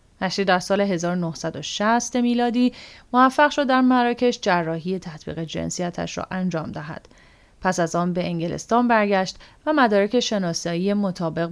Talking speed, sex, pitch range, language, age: 130 wpm, female, 175-240 Hz, English, 30-49